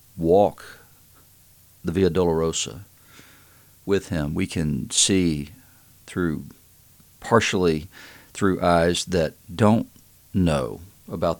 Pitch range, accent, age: 80-100 Hz, American, 50-69